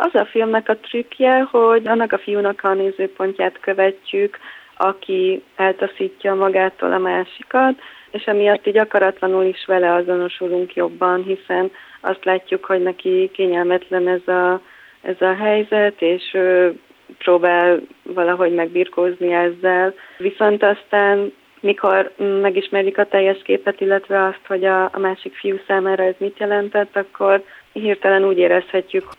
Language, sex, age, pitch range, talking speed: Hungarian, female, 30-49, 180-195 Hz, 125 wpm